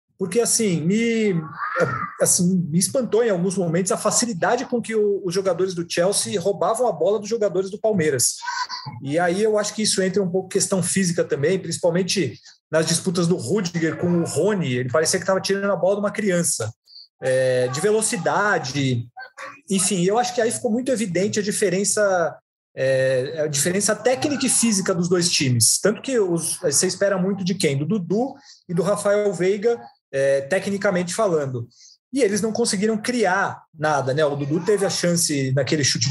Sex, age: male, 40-59